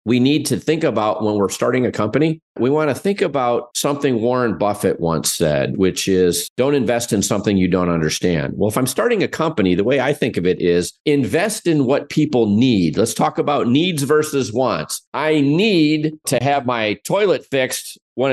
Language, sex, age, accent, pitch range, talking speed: English, male, 40-59, American, 105-140 Hz, 200 wpm